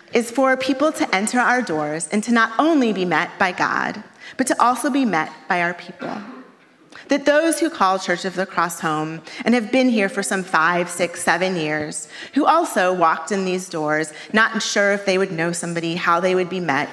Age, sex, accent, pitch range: 30-49, female, American, 170-230 Hz